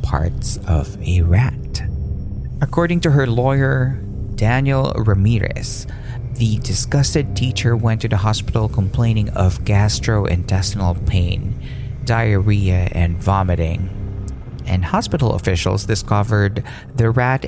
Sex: male